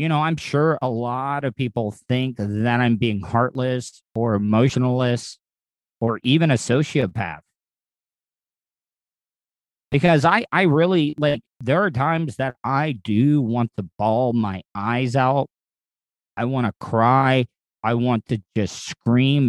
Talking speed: 140 wpm